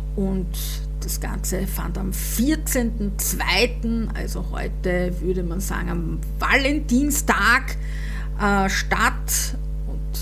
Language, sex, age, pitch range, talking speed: German, female, 50-69, 150-210 Hz, 95 wpm